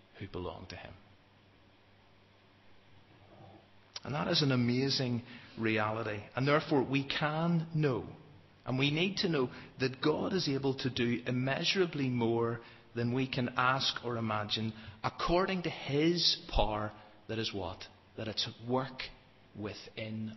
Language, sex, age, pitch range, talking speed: English, male, 40-59, 100-130 Hz, 135 wpm